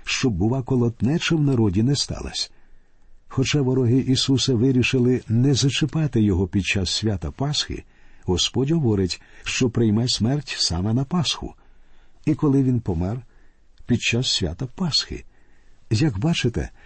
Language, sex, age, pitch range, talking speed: Ukrainian, male, 50-69, 105-130 Hz, 130 wpm